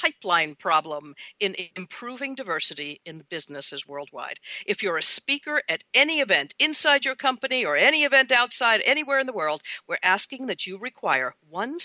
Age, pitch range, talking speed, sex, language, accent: 50-69, 180-260 Hz, 160 wpm, female, English, American